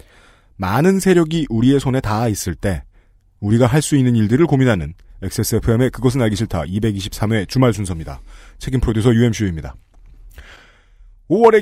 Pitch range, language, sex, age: 95-150 Hz, Korean, male, 40-59